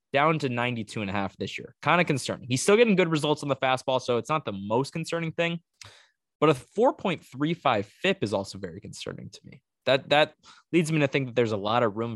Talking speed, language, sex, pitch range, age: 235 wpm, English, male, 105-140 Hz, 20-39